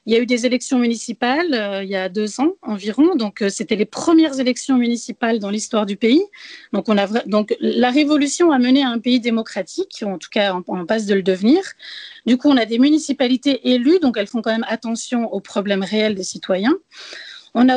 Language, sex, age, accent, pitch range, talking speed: French, female, 30-49, French, 210-265 Hz, 225 wpm